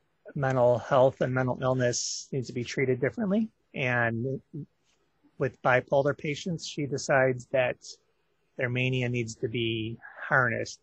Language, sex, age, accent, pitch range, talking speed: English, male, 30-49, American, 120-150 Hz, 125 wpm